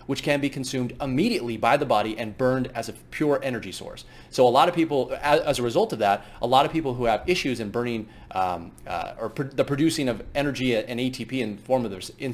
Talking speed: 220 wpm